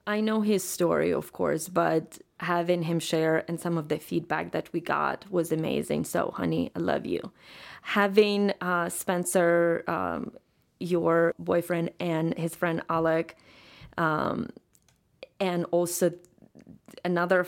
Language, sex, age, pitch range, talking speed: English, female, 20-39, 160-185 Hz, 135 wpm